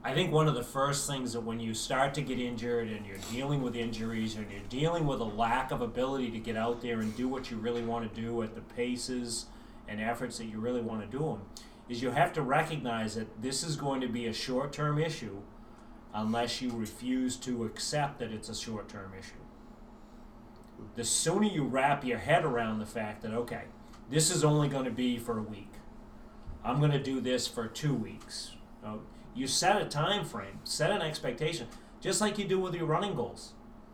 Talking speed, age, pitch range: 210 wpm, 30-49, 115-150 Hz